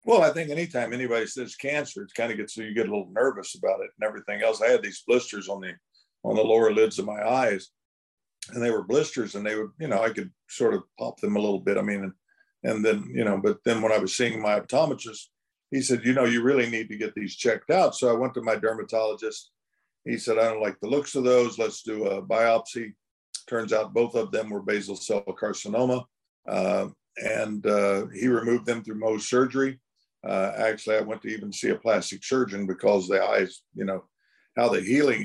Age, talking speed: 50-69, 230 wpm